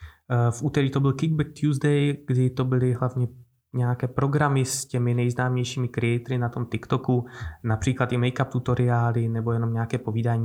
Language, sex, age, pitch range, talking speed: Czech, male, 20-39, 120-140 Hz, 155 wpm